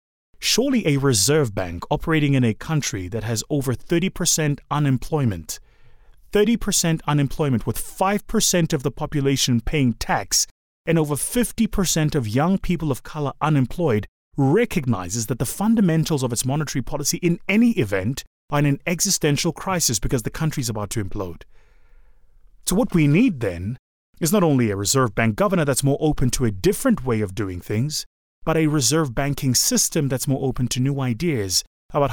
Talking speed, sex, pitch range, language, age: 165 wpm, male, 115-160 Hz, English, 30-49